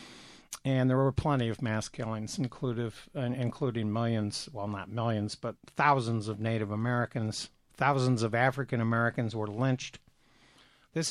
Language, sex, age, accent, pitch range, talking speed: English, male, 60-79, American, 115-145 Hz, 130 wpm